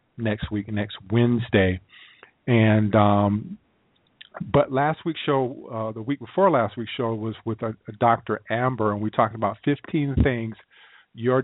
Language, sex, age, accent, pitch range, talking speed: English, male, 40-59, American, 110-130 Hz, 155 wpm